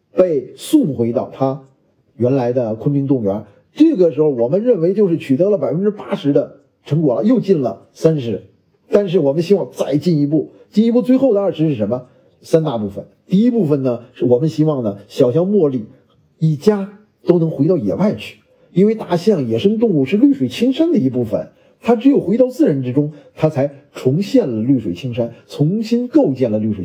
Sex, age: male, 50-69